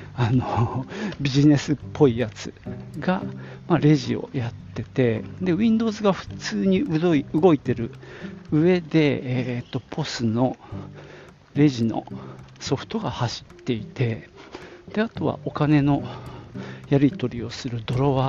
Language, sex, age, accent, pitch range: Japanese, male, 50-69, native, 115-155 Hz